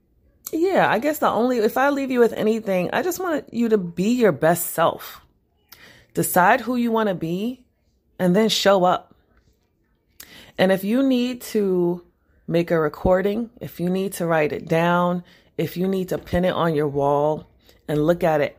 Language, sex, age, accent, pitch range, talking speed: English, female, 30-49, American, 160-210 Hz, 185 wpm